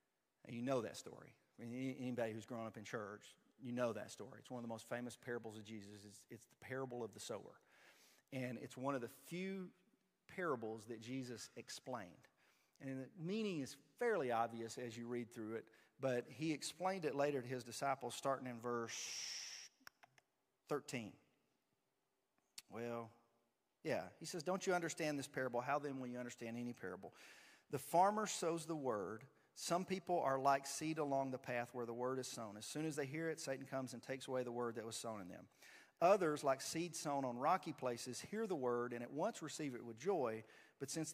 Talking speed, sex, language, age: 195 wpm, male, English, 40-59